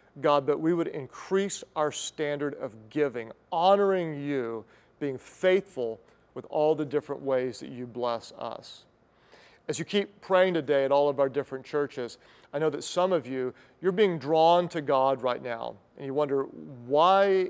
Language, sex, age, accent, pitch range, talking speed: English, male, 40-59, American, 130-160 Hz, 170 wpm